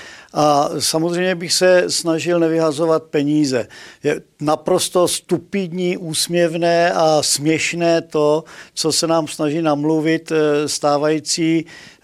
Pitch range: 145-160 Hz